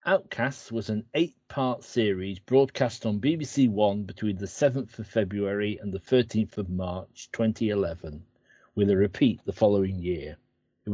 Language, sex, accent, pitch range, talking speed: English, male, British, 100-125 Hz, 150 wpm